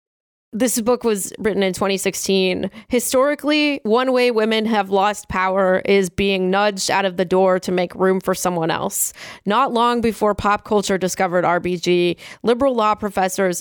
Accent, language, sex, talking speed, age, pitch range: American, English, female, 160 wpm, 20-39, 195-240 Hz